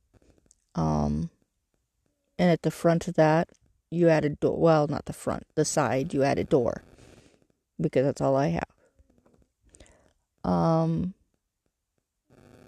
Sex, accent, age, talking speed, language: female, American, 30-49, 130 wpm, English